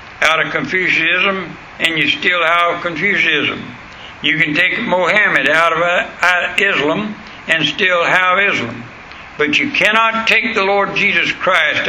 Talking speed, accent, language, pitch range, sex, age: 135 wpm, American, English, 165-195 Hz, male, 60-79